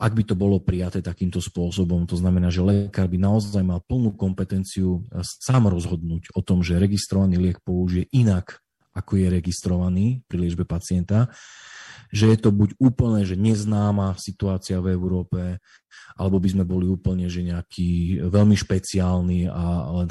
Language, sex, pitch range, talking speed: Slovak, male, 90-110 Hz, 150 wpm